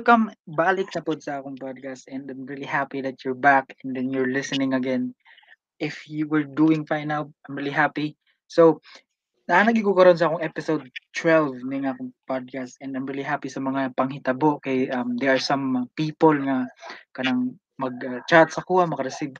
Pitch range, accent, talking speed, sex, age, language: 140-165 Hz, Filipino, 185 wpm, male, 20-39, English